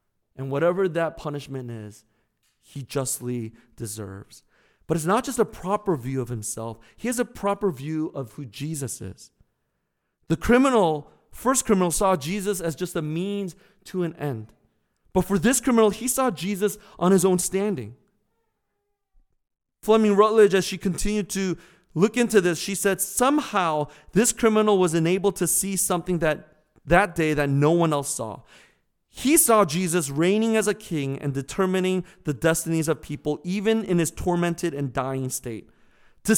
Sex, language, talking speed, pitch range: male, English, 160 wpm, 145-205 Hz